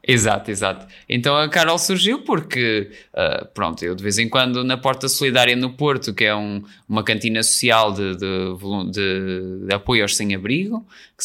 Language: Portuguese